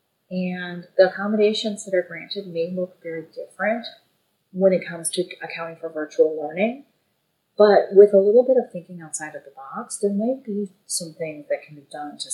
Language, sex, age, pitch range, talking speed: English, female, 30-49, 165-215 Hz, 190 wpm